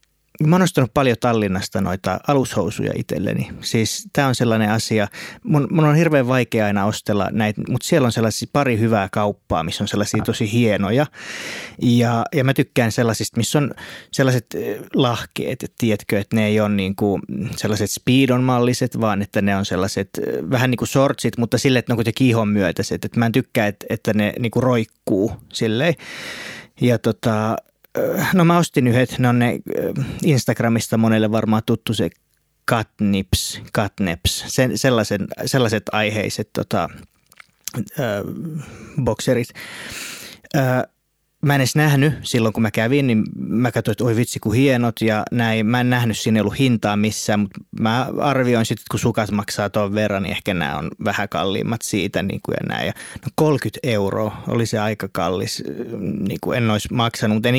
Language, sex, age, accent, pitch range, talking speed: Finnish, male, 30-49, native, 105-130 Hz, 160 wpm